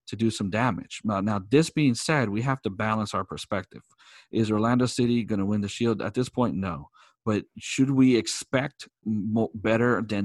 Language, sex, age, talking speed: English, male, 40-59, 200 wpm